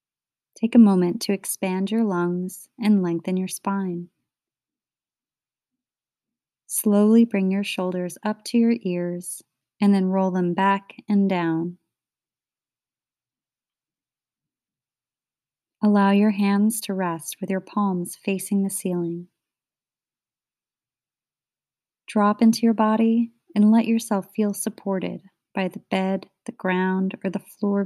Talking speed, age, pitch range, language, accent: 115 wpm, 30-49, 180-210 Hz, English, American